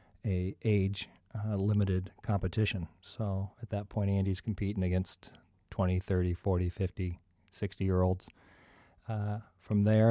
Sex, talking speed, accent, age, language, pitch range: male, 115 wpm, American, 40-59, English, 90-110 Hz